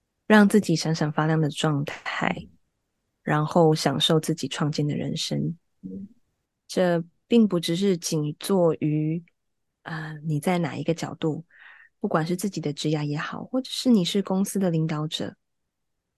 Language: Chinese